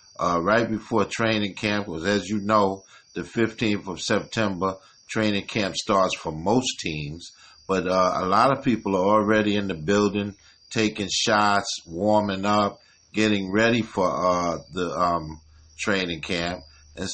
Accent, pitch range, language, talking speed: American, 95-125 Hz, English, 150 wpm